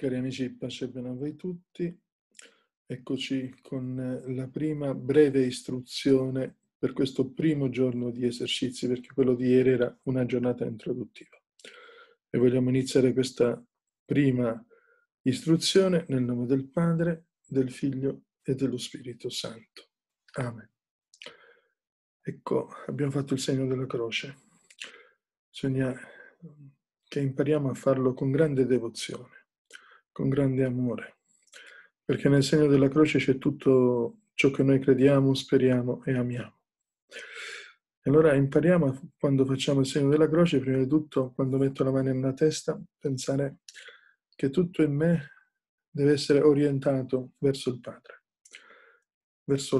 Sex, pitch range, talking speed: male, 130-155 Hz, 130 wpm